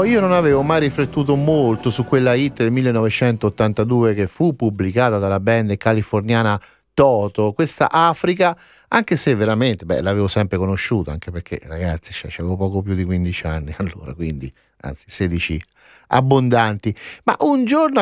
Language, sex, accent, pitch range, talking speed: Italian, male, native, 105-160 Hz, 145 wpm